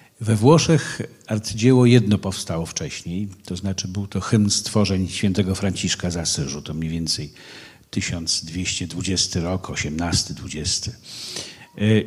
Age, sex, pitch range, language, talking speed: 50-69, male, 95-120 Hz, Polish, 110 wpm